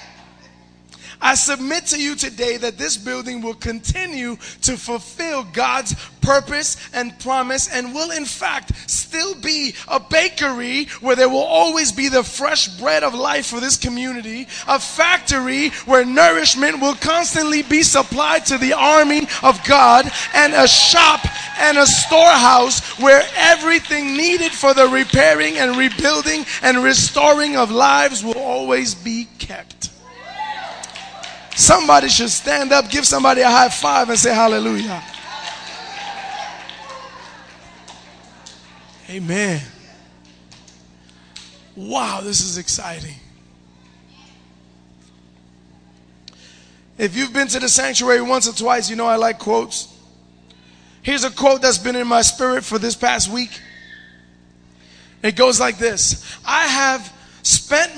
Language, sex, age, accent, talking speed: English, male, 20-39, American, 125 wpm